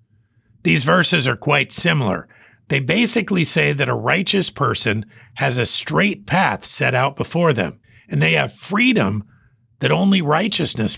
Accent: American